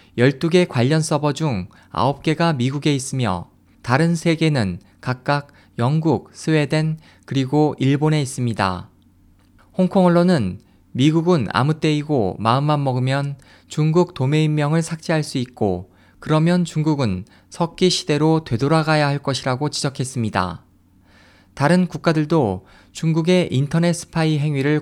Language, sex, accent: Korean, male, native